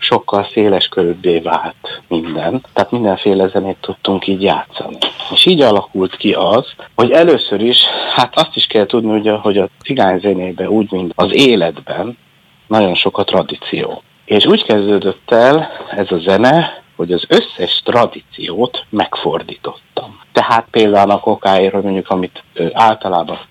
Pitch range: 95-125 Hz